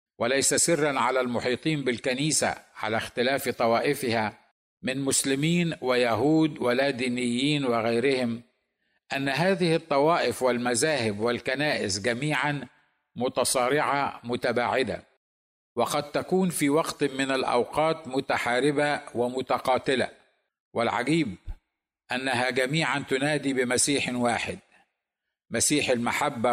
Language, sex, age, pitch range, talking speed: Arabic, male, 50-69, 120-145 Hz, 85 wpm